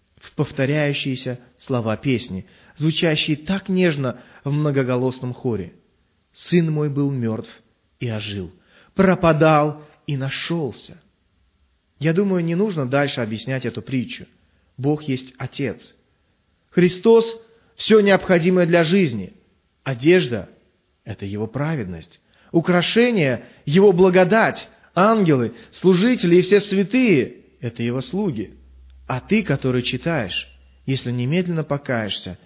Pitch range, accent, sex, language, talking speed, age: 120-190 Hz, native, male, Russian, 105 wpm, 30-49